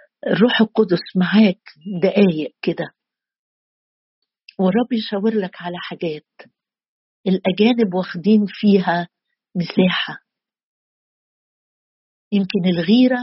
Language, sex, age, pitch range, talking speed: Arabic, female, 50-69, 185-225 Hz, 75 wpm